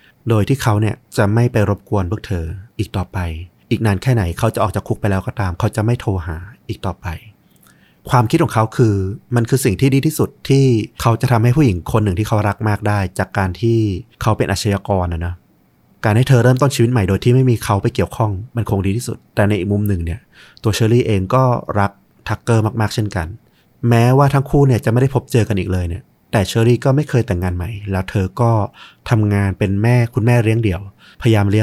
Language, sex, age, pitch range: Thai, male, 30-49, 100-120 Hz